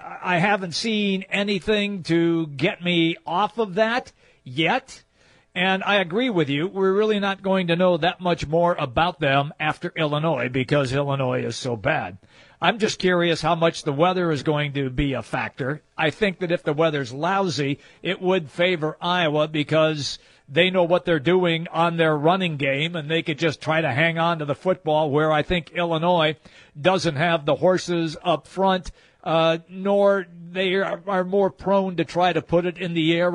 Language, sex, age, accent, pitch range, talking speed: English, male, 50-69, American, 155-190 Hz, 185 wpm